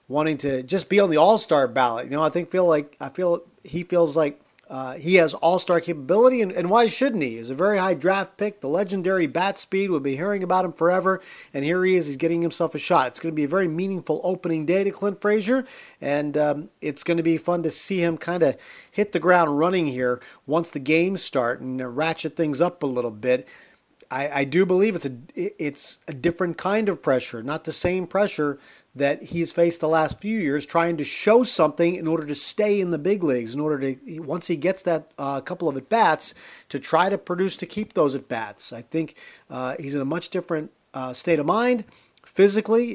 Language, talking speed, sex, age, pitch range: English, 230 wpm, male, 40-59, 145-185 Hz